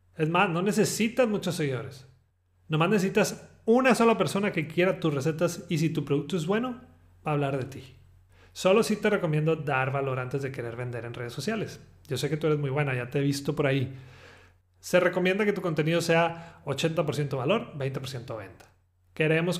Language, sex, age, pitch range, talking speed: Spanish, male, 30-49, 130-170 Hz, 195 wpm